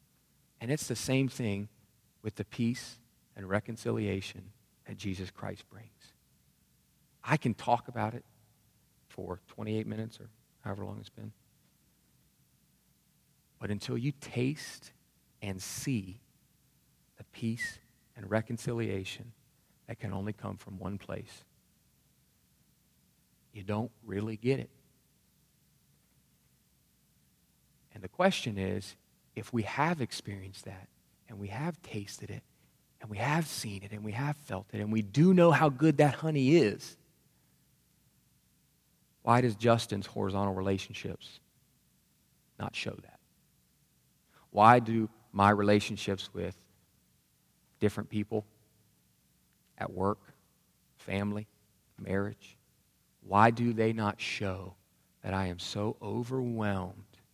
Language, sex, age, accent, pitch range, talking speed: English, male, 40-59, American, 100-120 Hz, 115 wpm